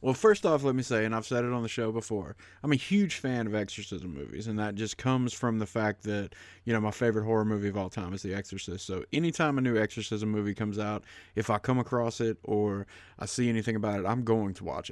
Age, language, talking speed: 30-49, English, 260 wpm